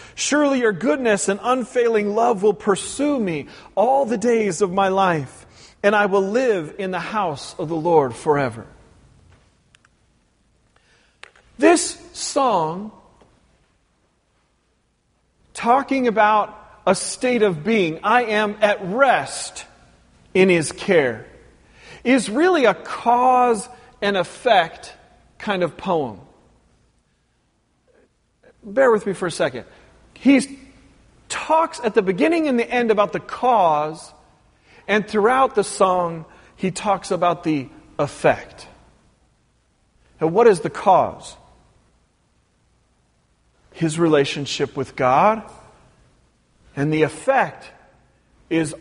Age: 40-59